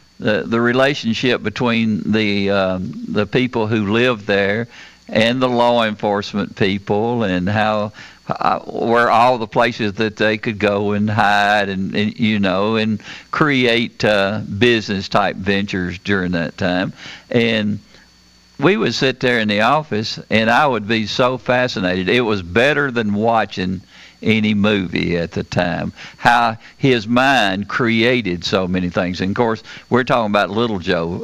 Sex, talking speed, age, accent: male, 155 wpm, 50-69, American